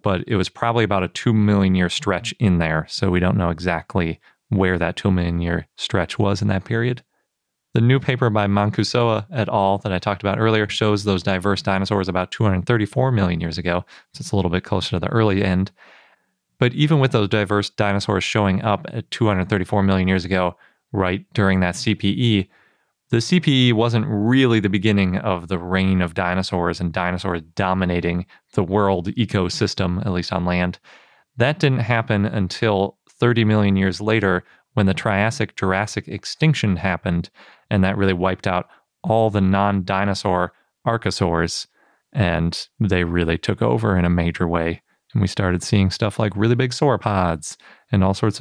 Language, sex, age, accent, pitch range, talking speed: English, male, 30-49, American, 90-110 Hz, 170 wpm